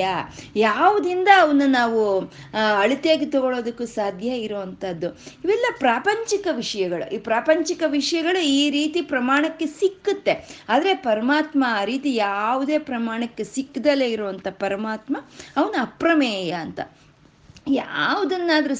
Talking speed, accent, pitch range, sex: 95 wpm, native, 210-305 Hz, female